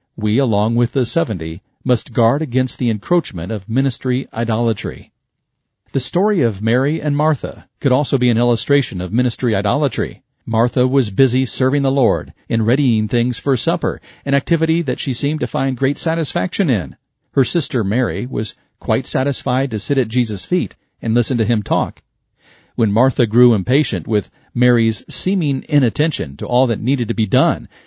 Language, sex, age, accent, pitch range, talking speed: English, male, 40-59, American, 115-135 Hz, 170 wpm